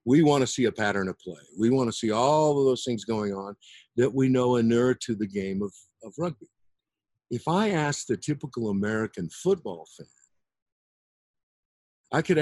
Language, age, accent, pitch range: English, 50-69, American, 110-160 Hz